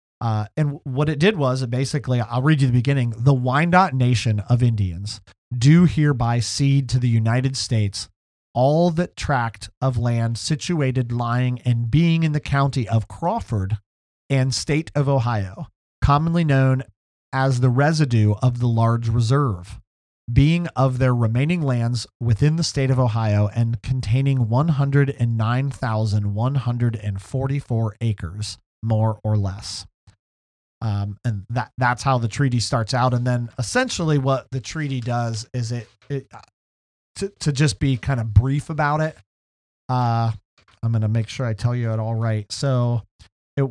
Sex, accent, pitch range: male, American, 110-140 Hz